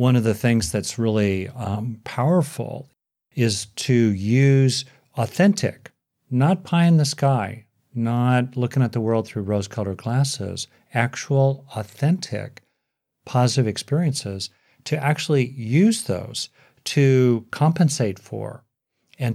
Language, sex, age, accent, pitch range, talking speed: English, male, 50-69, American, 105-135 Hz, 115 wpm